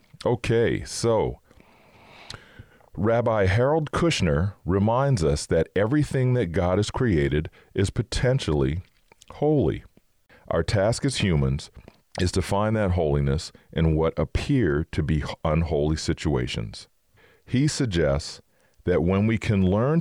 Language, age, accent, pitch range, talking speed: English, 40-59, American, 75-105 Hz, 115 wpm